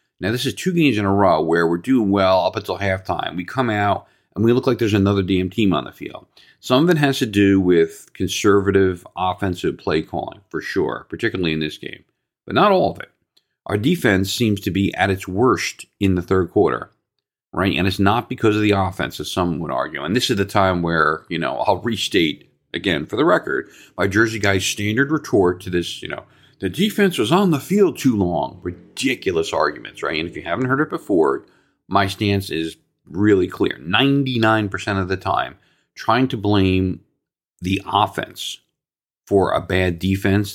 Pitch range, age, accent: 95-125 Hz, 40-59, American